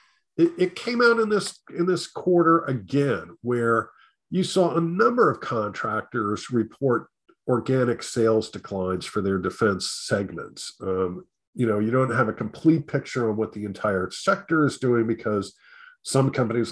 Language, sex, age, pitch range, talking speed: English, male, 50-69, 105-140 Hz, 155 wpm